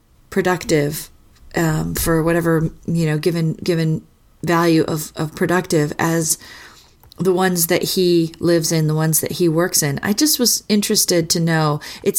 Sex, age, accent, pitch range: female, 40-59, American, 160-200 Hz